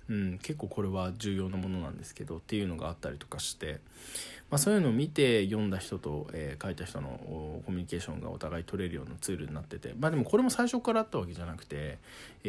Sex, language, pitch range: male, Japanese, 85-125 Hz